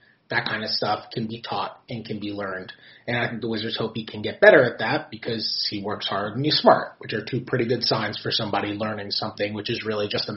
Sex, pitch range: male, 115-145 Hz